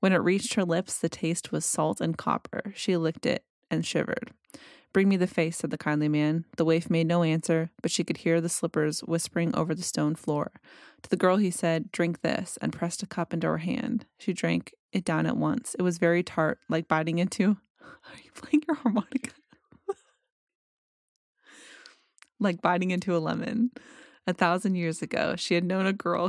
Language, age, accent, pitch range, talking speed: English, 20-39, American, 170-205 Hz, 195 wpm